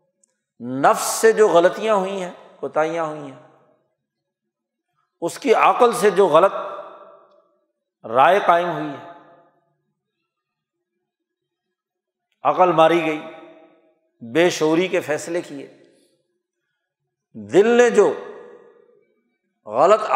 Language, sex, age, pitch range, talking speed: Urdu, male, 50-69, 160-235 Hz, 90 wpm